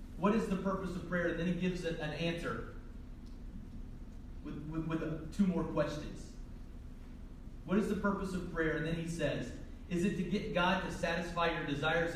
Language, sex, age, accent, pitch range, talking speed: English, male, 30-49, American, 155-200 Hz, 185 wpm